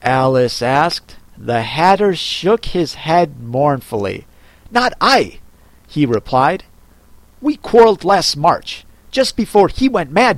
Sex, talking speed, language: male, 120 wpm, English